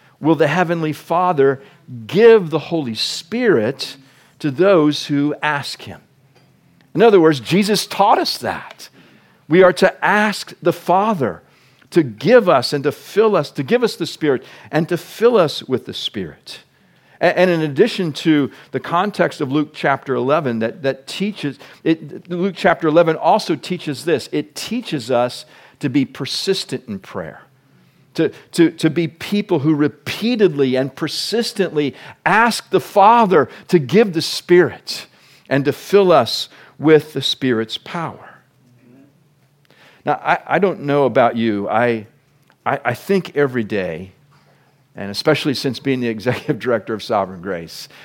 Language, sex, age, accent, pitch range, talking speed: English, male, 50-69, American, 130-180 Hz, 150 wpm